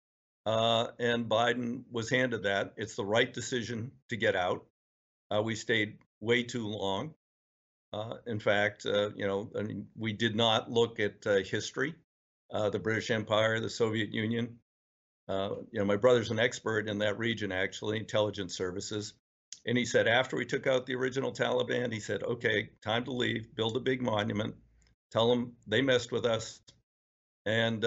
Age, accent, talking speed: 60-79, American, 175 wpm